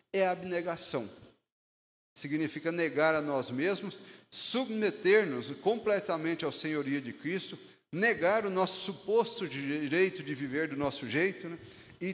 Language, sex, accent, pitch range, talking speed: Portuguese, male, Brazilian, 130-160 Hz, 130 wpm